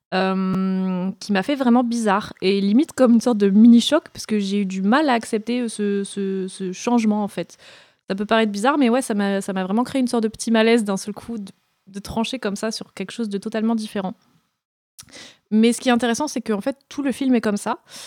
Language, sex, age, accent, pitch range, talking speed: French, female, 20-39, French, 200-245 Hz, 240 wpm